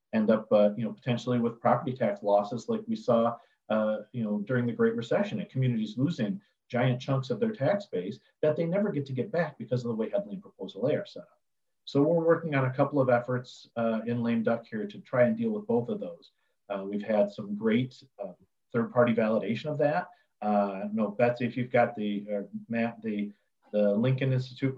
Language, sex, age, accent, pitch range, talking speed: English, male, 40-59, American, 110-135 Hz, 220 wpm